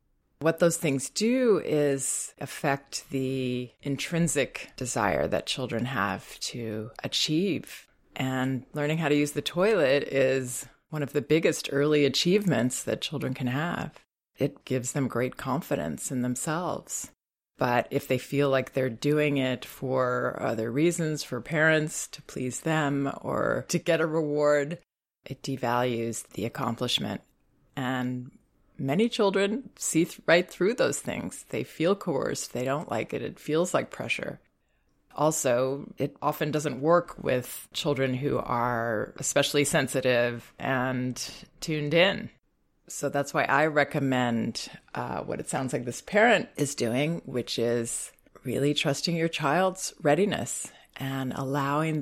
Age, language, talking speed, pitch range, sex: 30-49, English, 140 wpm, 125-155 Hz, female